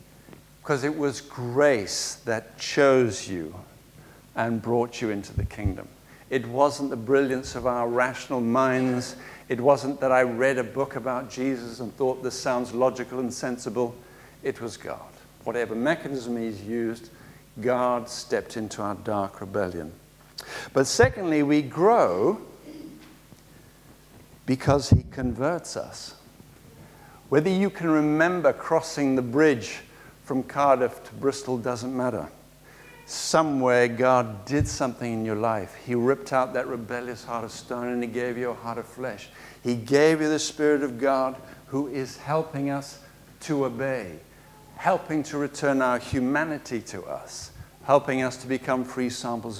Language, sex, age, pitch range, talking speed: English, male, 60-79, 120-145 Hz, 145 wpm